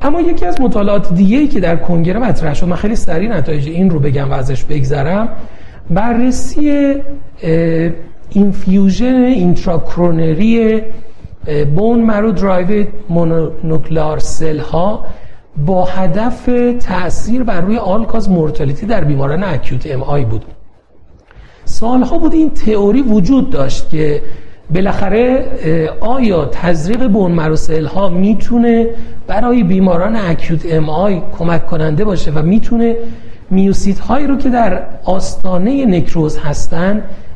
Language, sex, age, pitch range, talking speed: Persian, male, 40-59, 160-225 Hz, 115 wpm